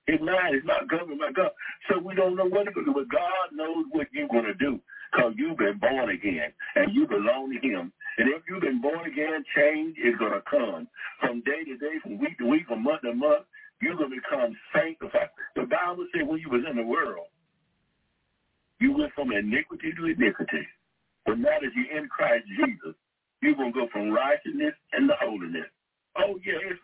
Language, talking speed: English, 210 wpm